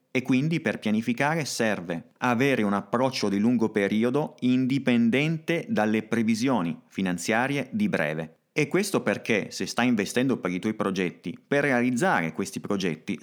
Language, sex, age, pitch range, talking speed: Italian, male, 30-49, 95-125 Hz, 140 wpm